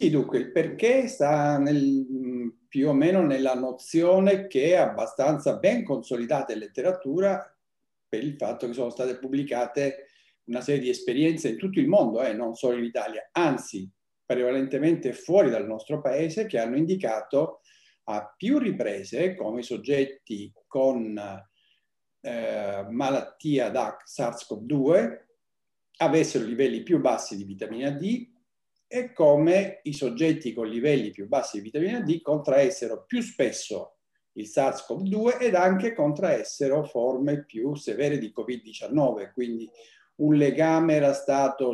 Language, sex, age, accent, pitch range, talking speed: Italian, male, 50-69, native, 125-165 Hz, 135 wpm